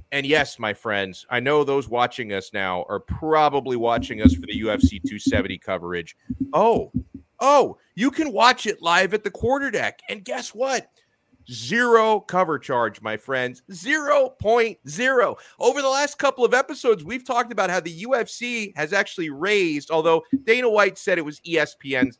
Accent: American